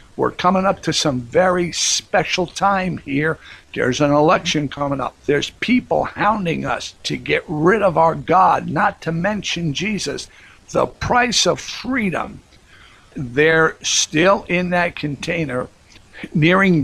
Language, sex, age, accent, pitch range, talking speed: English, male, 60-79, American, 145-180 Hz, 135 wpm